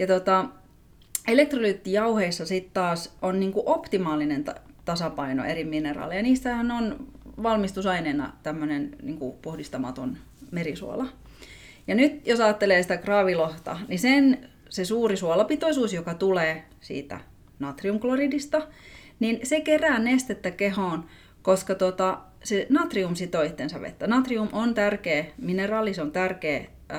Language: Finnish